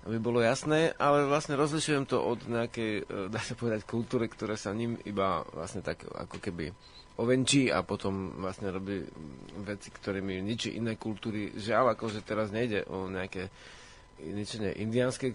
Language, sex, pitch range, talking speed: Slovak, male, 100-125 Hz, 150 wpm